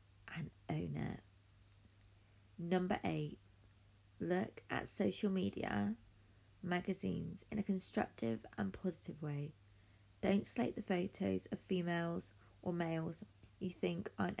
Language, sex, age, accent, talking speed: English, female, 20-39, British, 110 wpm